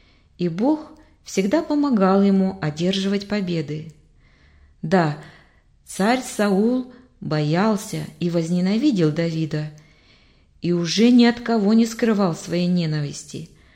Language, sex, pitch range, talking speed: Russian, female, 170-230 Hz, 100 wpm